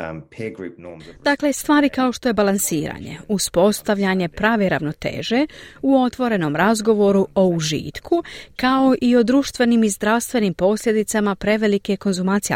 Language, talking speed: Croatian, 110 wpm